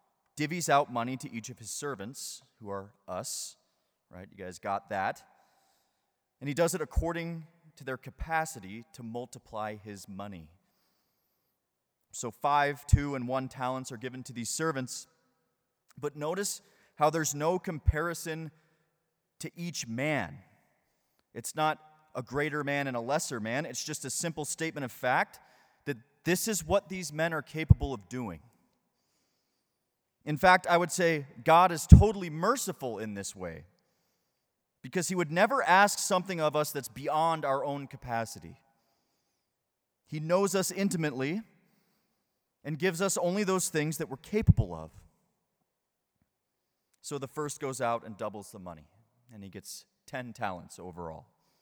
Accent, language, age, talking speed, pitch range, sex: American, English, 30-49, 150 wpm, 120-170 Hz, male